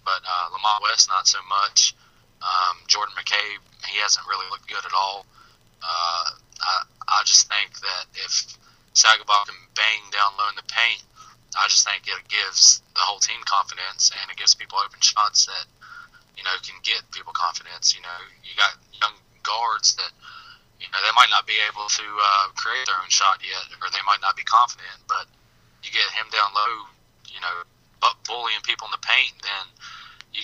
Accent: American